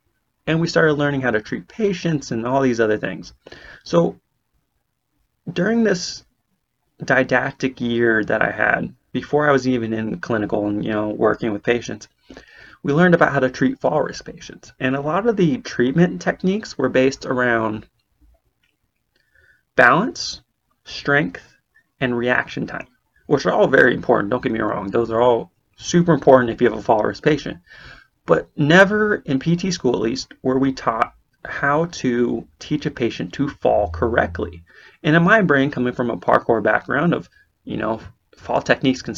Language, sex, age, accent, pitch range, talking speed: English, male, 30-49, American, 120-145 Hz, 170 wpm